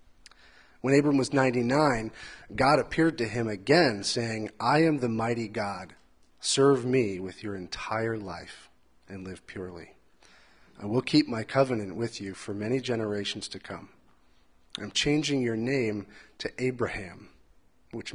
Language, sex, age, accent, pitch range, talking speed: English, male, 30-49, American, 100-130 Hz, 140 wpm